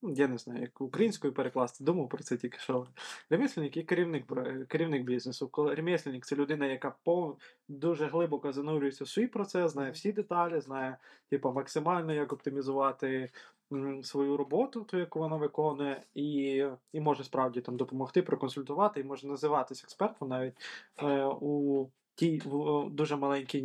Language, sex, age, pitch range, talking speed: Ukrainian, male, 20-39, 135-155 Hz, 145 wpm